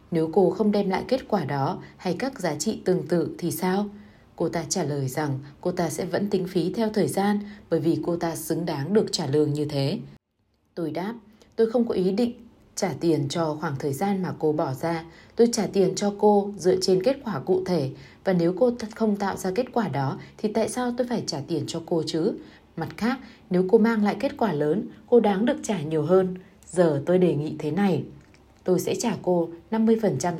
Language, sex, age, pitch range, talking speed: Vietnamese, female, 20-39, 155-205 Hz, 225 wpm